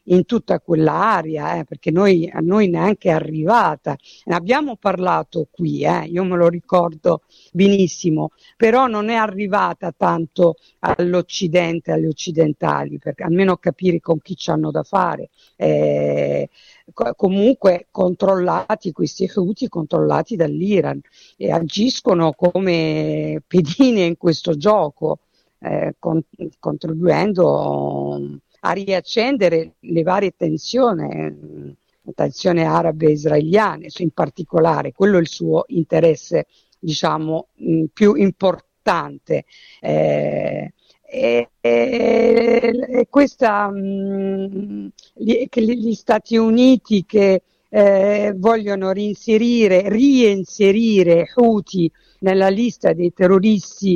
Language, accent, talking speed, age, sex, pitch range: Italian, native, 110 wpm, 50-69, female, 160-205 Hz